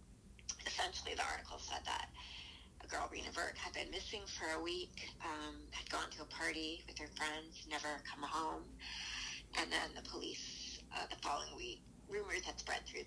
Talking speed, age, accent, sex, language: 180 wpm, 30-49, American, female, English